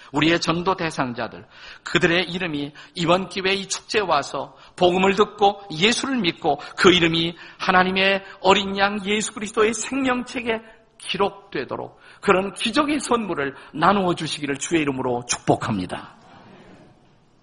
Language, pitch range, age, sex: Korean, 135-195 Hz, 50-69, male